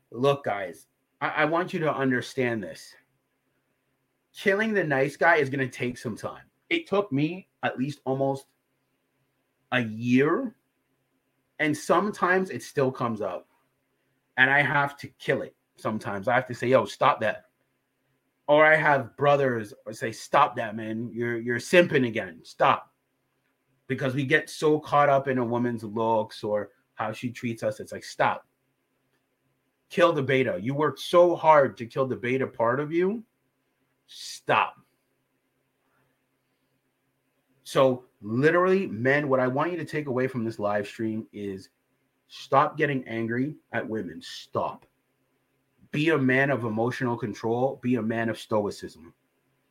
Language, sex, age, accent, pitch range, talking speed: English, male, 30-49, American, 120-145 Hz, 150 wpm